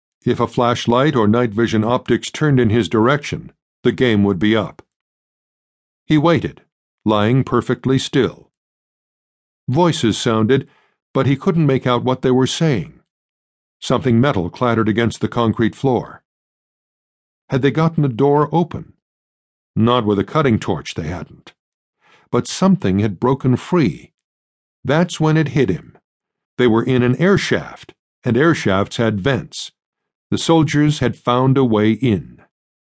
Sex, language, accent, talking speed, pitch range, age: male, English, American, 145 wpm, 115-150 Hz, 60-79